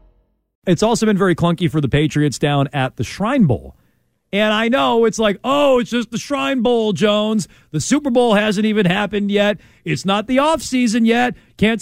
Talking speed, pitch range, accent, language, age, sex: 195 wpm, 160-230 Hz, American, English, 40-59, male